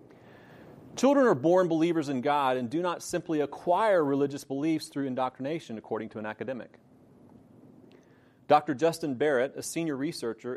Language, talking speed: English, 140 wpm